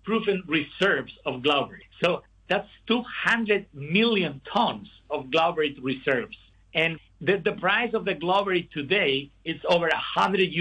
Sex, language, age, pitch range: male, Chinese, 50-69, 160-200 Hz